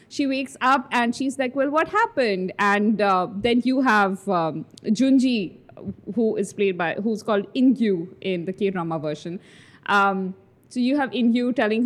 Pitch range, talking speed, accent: 190-260 Hz, 165 wpm, Indian